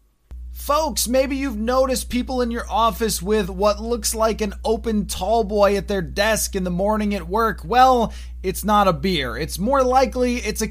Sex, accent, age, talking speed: male, American, 20-39, 190 wpm